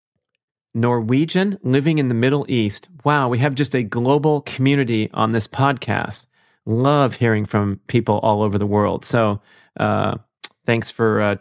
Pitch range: 105-125 Hz